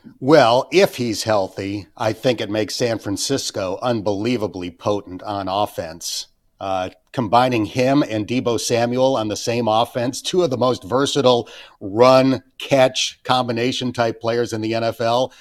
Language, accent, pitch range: English, American, 110-135 Hz